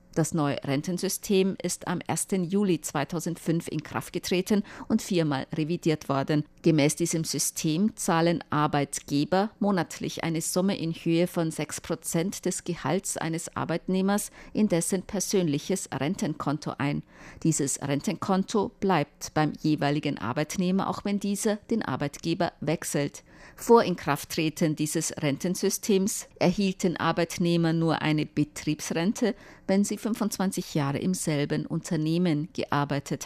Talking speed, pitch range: 115 wpm, 150-190 Hz